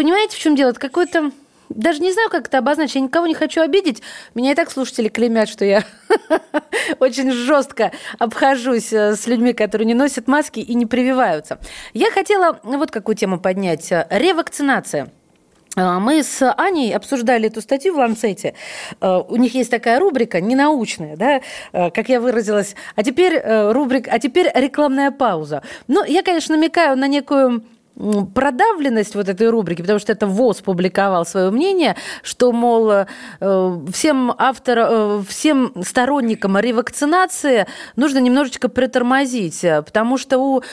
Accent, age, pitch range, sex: native, 20-39, 215-285 Hz, female